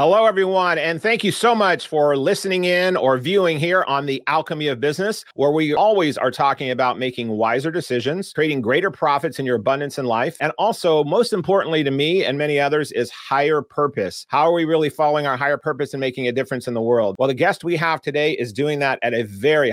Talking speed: 225 wpm